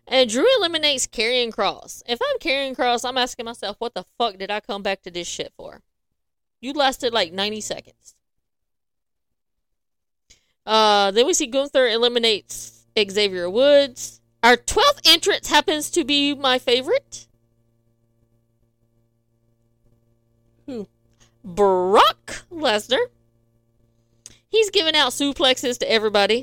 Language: English